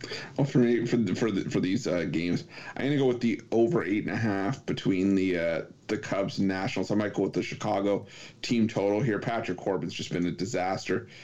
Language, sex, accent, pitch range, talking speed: English, male, American, 95-115 Hz, 235 wpm